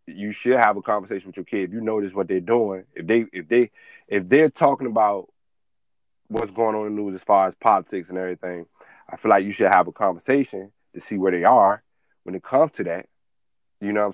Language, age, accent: English, 30-49, American